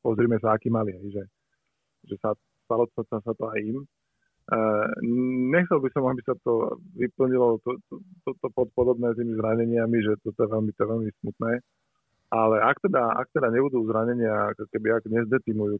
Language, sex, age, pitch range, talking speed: Slovak, male, 30-49, 110-120 Hz, 185 wpm